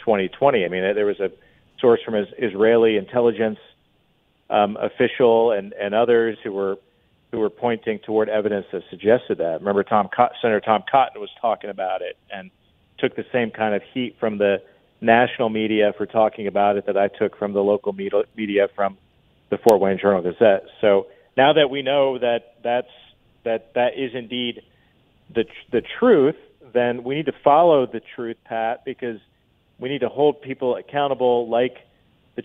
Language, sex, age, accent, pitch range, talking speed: English, male, 40-59, American, 105-125 Hz, 175 wpm